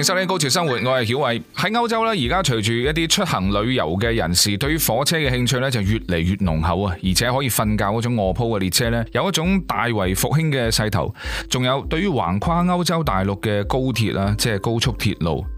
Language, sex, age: Chinese, male, 20-39